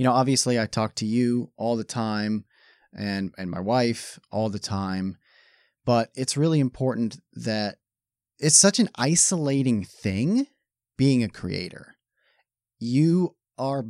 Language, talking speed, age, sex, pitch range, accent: English, 140 wpm, 30-49, male, 110-155 Hz, American